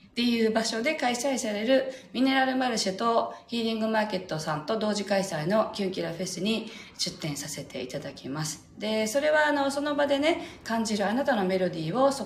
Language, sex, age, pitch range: Japanese, female, 40-59, 155-225 Hz